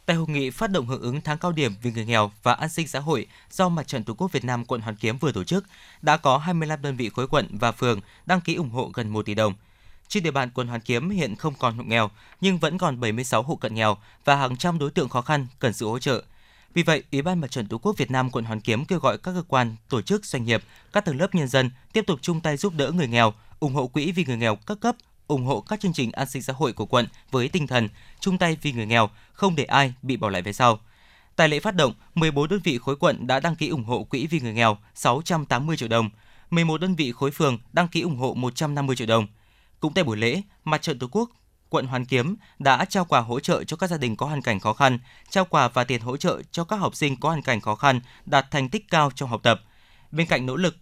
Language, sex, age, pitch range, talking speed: Vietnamese, male, 20-39, 115-165 Hz, 275 wpm